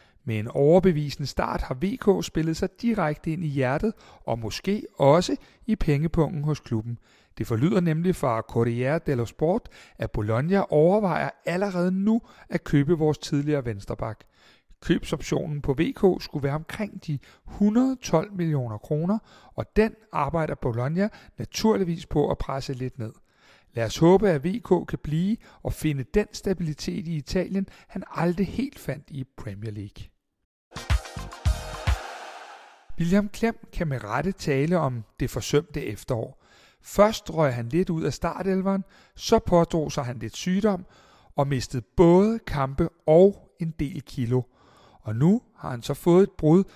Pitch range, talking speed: 135-185 Hz, 150 wpm